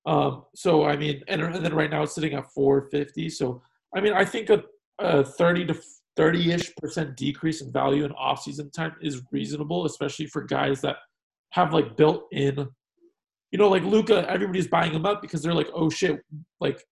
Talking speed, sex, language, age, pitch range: 195 wpm, male, English, 40-59, 140-170 Hz